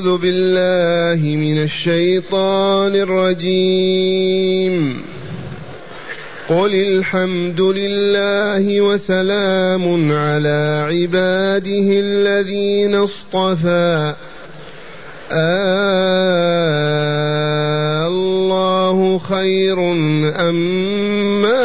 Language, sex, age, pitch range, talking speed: Arabic, male, 30-49, 175-200 Hz, 45 wpm